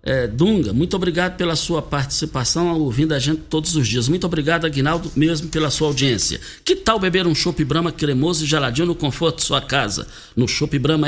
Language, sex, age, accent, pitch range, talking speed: Portuguese, male, 60-79, Brazilian, 130-175 Hz, 200 wpm